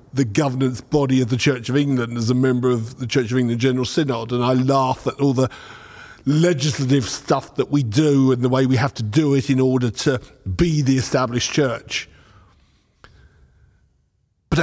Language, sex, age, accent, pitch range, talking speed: English, male, 50-69, British, 110-130 Hz, 185 wpm